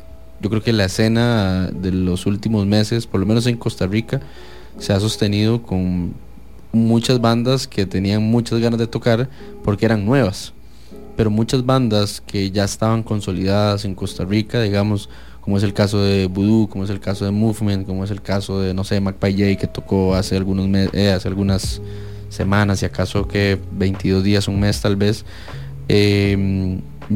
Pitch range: 95-110 Hz